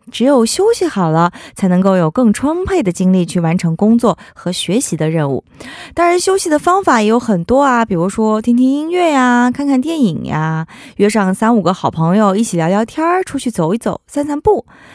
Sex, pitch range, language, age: female, 185-255 Hz, Korean, 20-39